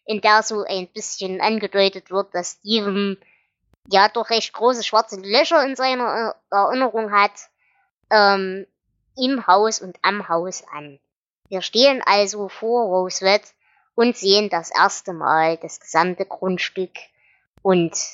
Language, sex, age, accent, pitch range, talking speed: German, male, 20-39, German, 185-220 Hz, 130 wpm